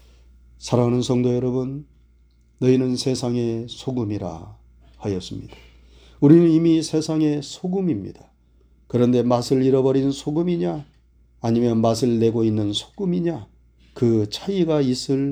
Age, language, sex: 40-59, Korean, male